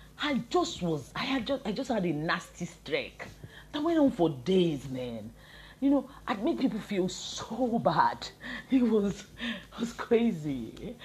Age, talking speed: 40-59, 170 wpm